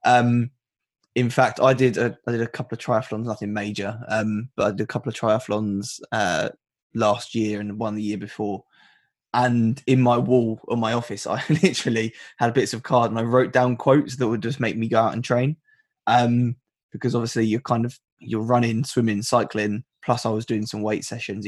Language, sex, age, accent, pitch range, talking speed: English, male, 20-39, British, 110-125 Hz, 205 wpm